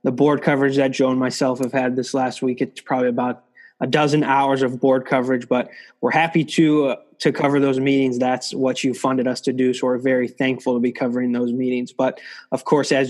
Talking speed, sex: 225 wpm, male